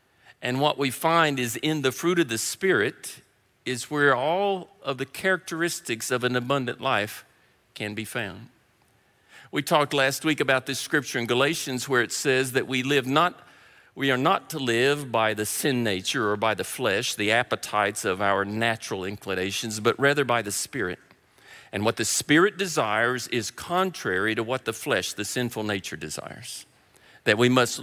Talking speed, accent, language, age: 175 wpm, American, English, 50-69